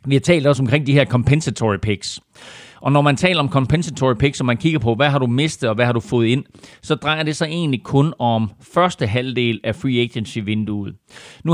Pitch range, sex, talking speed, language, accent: 115-140 Hz, male, 225 wpm, Danish, native